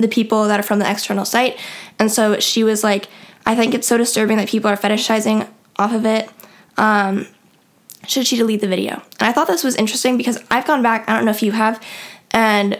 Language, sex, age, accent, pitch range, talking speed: English, female, 10-29, American, 205-230 Hz, 225 wpm